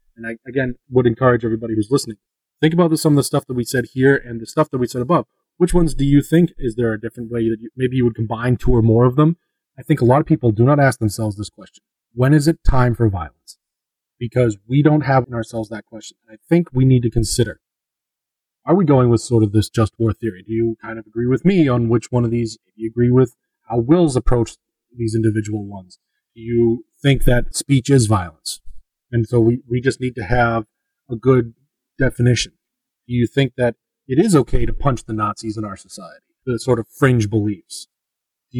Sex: male